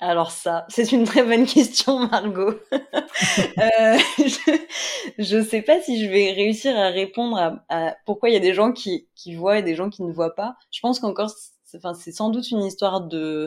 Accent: French